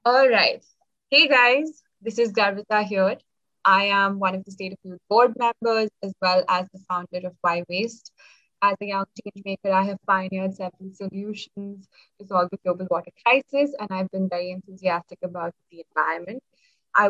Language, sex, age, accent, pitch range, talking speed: English, female, 20-39, Indian, 185-225 Hz, 175 wpm